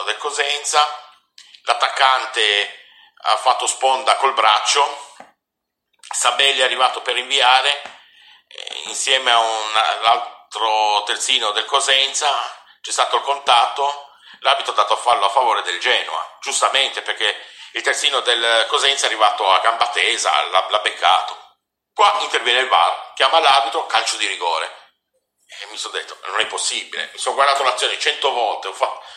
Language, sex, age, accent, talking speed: Italian, male, 50-69, native, 145 wpm